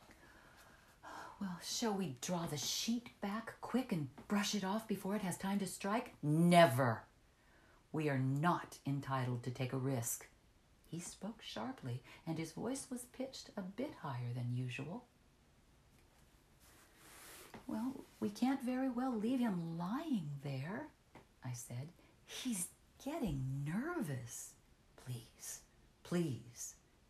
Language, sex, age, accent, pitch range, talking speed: English, female, 50-69, American, 125-190 Hz, 125 wpm